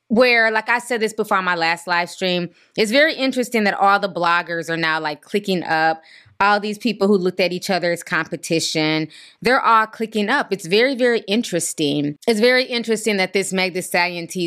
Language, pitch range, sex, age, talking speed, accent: English, 170-225 Hz, female, 20-39, 195 wpm, American